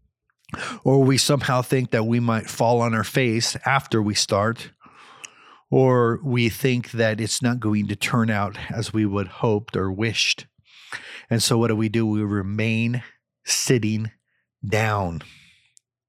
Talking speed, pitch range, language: 150 wpm, 110-140 Hz, English